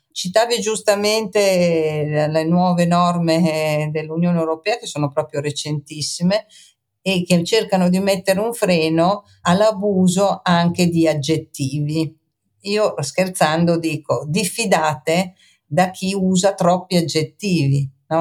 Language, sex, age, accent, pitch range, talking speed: Italian, female, 50-69, native, 150-180 Hz, 100 wpm